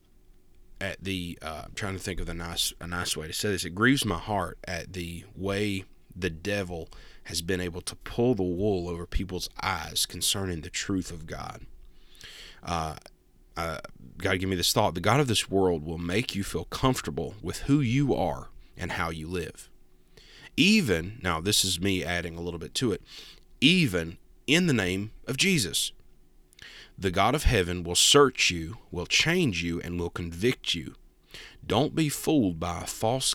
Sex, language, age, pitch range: male, English, 30-49, 85-105 Hz